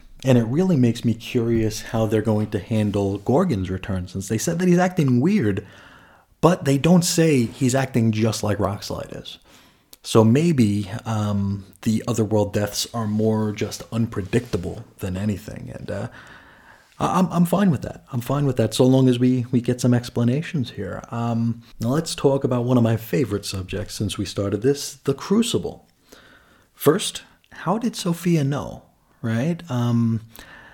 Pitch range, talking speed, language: 105-135 Hz, 165 wpm, English